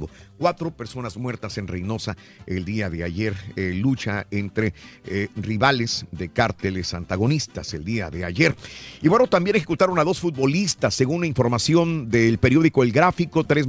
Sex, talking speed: male, 160 wpm